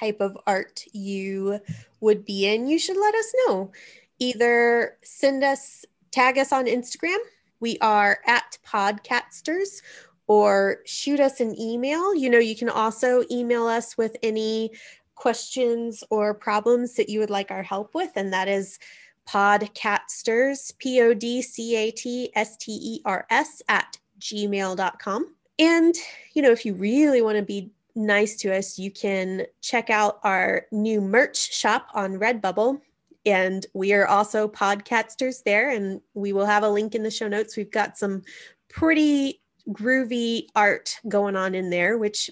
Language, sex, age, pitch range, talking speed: English, female, 20-39, 205-265 Hz, 145 wpm